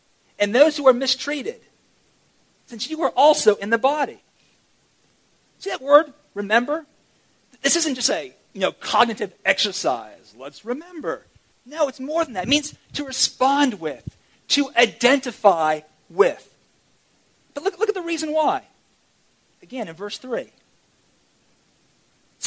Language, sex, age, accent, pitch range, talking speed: English, male, 40-59, American, 190-295 Hz, 135 wpm